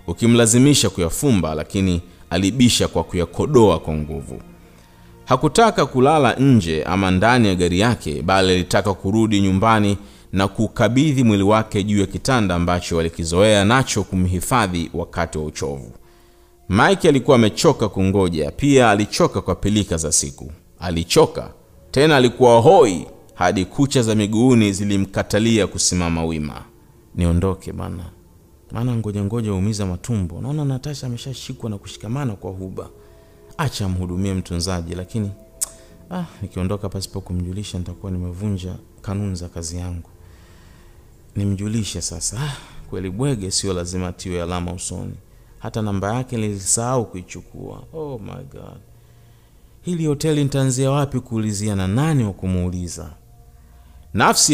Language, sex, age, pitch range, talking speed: Swahili, male, 30-49, 90-115 Hz, 115 wpm